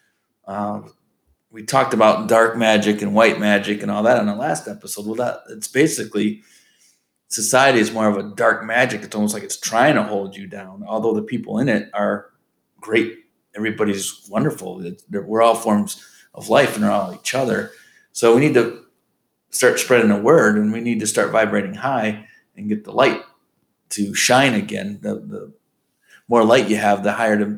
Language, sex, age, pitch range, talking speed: English, male, 30-49, 105-130 Hz, 190 wpm